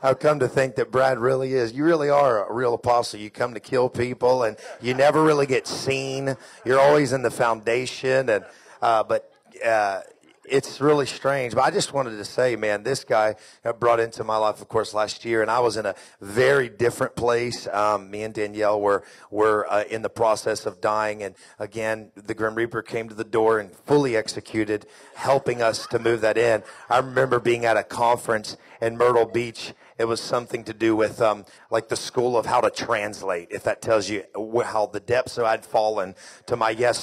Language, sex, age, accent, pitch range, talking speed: English, male, 40-59, American, 110-130 Hz, 210 wpm